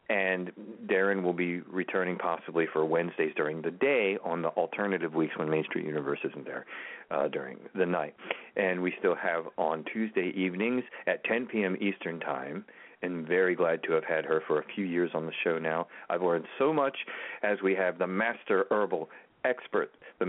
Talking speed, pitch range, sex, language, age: 190 wpm, 80-100 Hz, male, English, 40-59